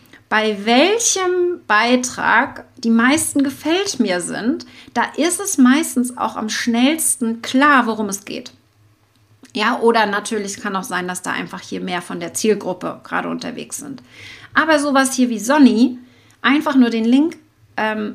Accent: German